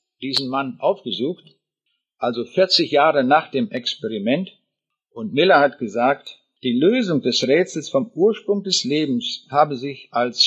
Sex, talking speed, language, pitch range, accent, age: male, 140 wpm, German, 135-190 Hz, German, 50-69